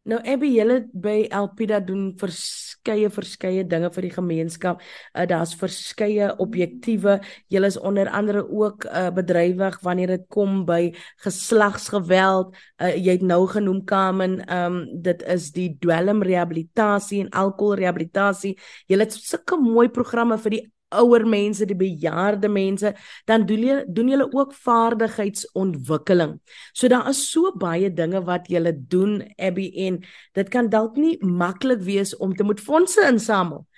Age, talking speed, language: 20-39, 145 wpm, English